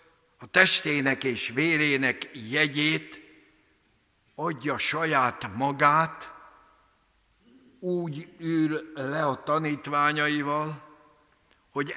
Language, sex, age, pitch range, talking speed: Hungarian, male, 60-79, 125-150 Hz, 70 wpm